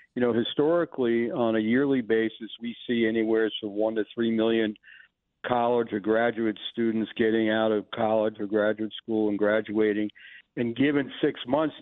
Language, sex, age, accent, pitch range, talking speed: English, male, 60-79, American, 110-125 Hz, 165 wpm